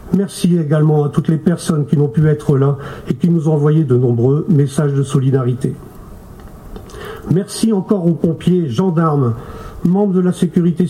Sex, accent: male, French